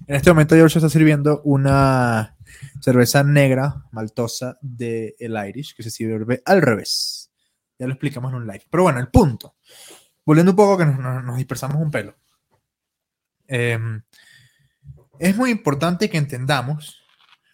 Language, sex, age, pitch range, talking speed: Spanish, male, 20-39, 130-170 Hz, 145 wpm